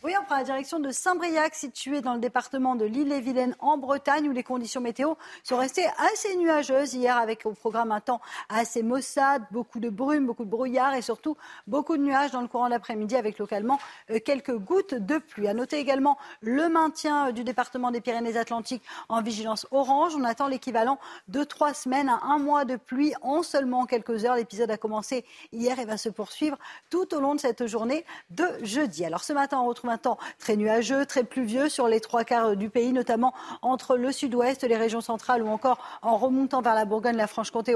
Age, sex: 40-59, female